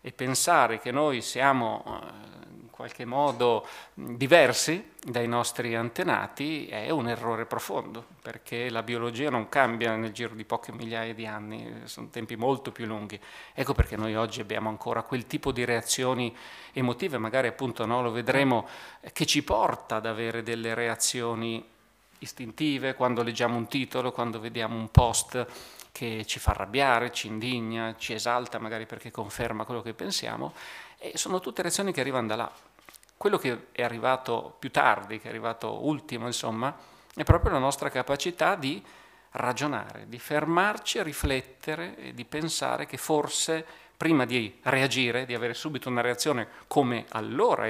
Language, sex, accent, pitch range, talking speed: Italian, male, native, 115-135 Hz, 155 wpm